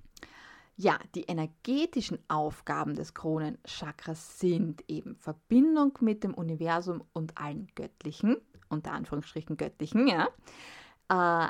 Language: German